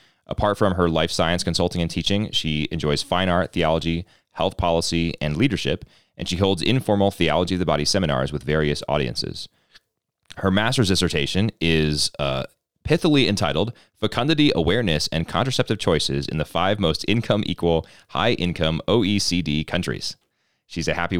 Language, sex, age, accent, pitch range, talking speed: English, male, 30-49, American, 75-95 Hz, 150 wpm